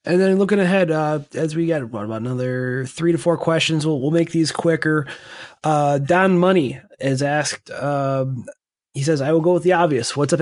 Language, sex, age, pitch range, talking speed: English, male, 20-39, 145-180 Hz, 200 wpm